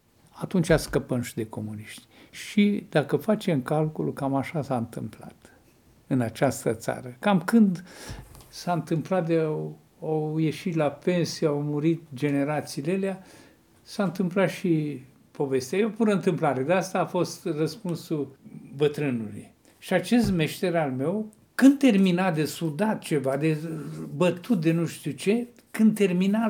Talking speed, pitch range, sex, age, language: 135 wpm, 150-195 Hz, male, 60-79, Romanian